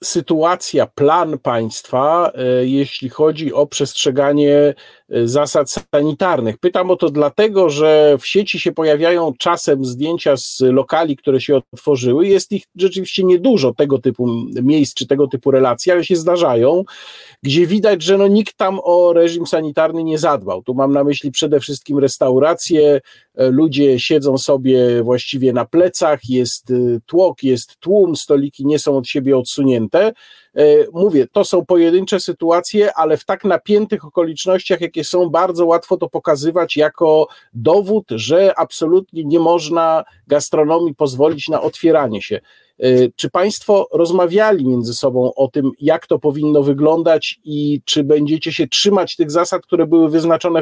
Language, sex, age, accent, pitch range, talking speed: Polish, male, 50-69, native, 140-175 Hz, 140 wpm